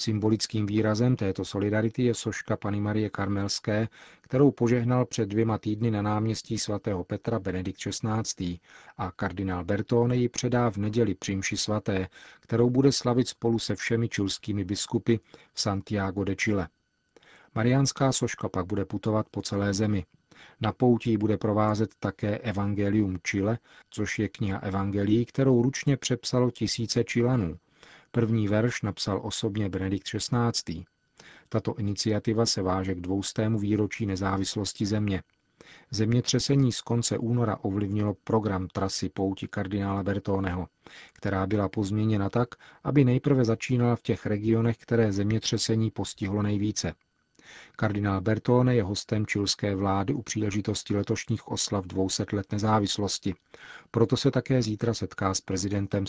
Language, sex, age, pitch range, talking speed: Czech, male, 40-59, 100-115 Hz, 135 wpm